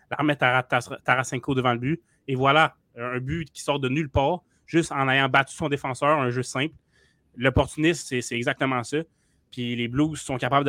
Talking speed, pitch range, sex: 185 wpm, 120-140 Hz, male